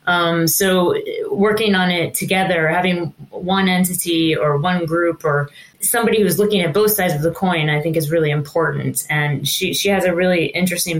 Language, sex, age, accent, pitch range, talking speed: English, female, 20-39, American, 165-205 Hz, 185 wpm